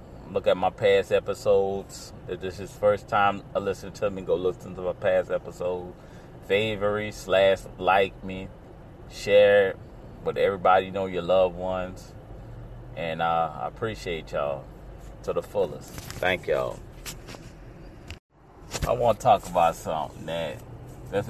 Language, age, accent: English, 30-49, American